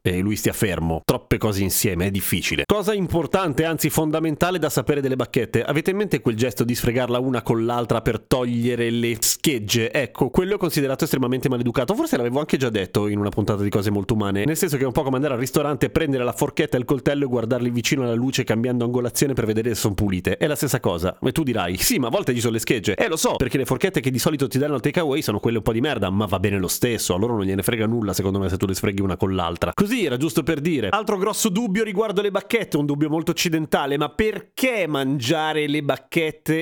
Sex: male